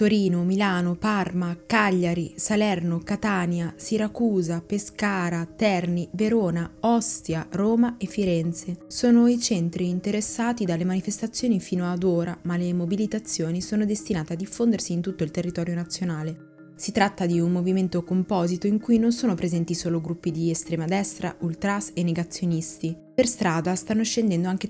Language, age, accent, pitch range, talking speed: Italian, 20-39, native, 165-195 Hz, 145 wpm